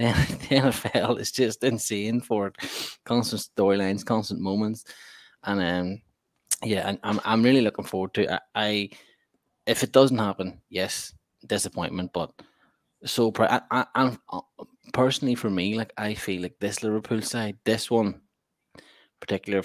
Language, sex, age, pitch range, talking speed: English, male, 20-39, 100-120 Hz, 150 wpm